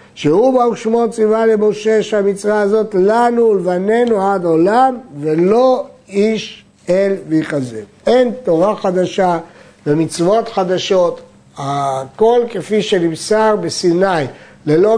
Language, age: Hebrew, 60-79